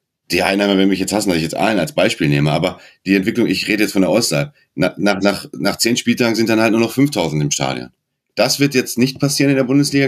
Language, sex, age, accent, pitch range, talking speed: German, male, 30-49, German, 95-120 Hz, 250 wpm